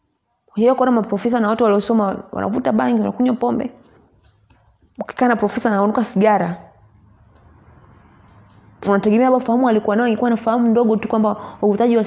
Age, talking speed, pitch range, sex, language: 30-49, 140 wpm, 190-245 Hz, female, English